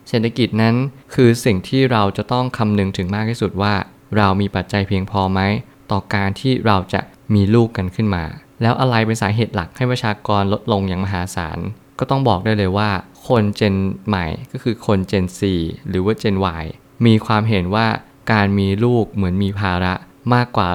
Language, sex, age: Thai, male, 20-39